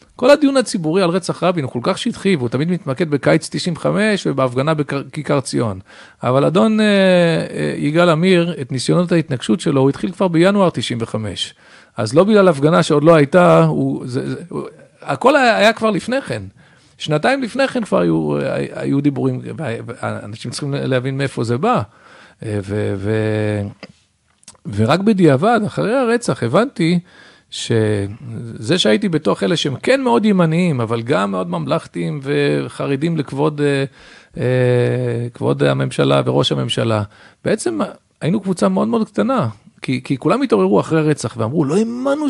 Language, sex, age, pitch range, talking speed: Hebrew, male, 50-69, 120-195 Hz, 150 wpm